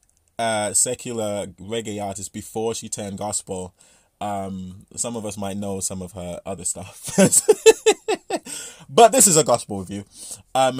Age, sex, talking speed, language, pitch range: 20-39, male, 145 wpm, English, 95-115 Hz